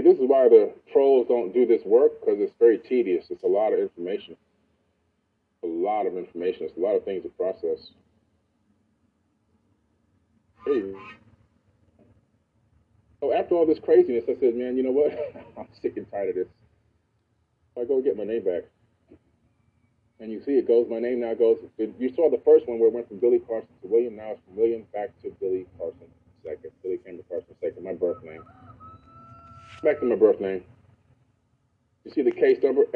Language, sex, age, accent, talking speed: English, male, 30-49, American, 190 wpm